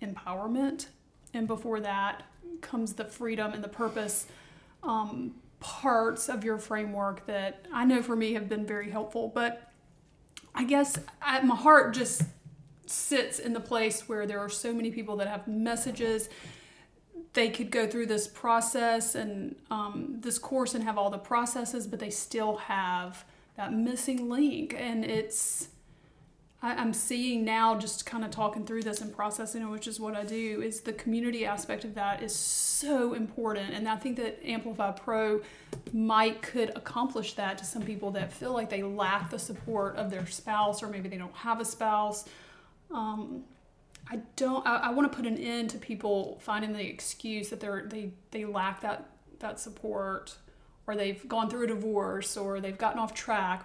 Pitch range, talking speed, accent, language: 205-235 Hz, 175 wpm, American, English